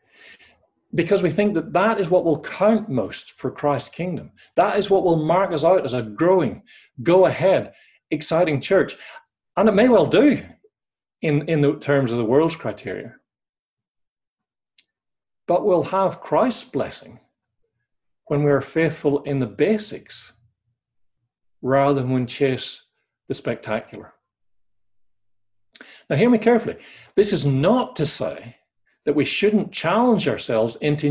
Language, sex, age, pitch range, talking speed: English, male, 40-59, 130-200 Hz, 140 wpm